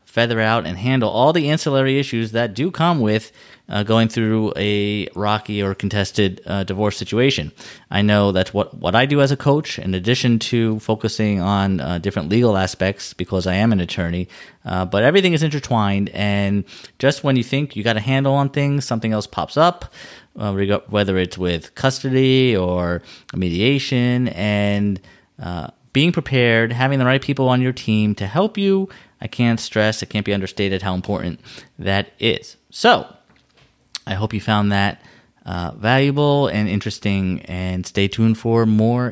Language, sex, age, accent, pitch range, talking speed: English, male, 30-49, American, 100-135 Hz, 175 wpm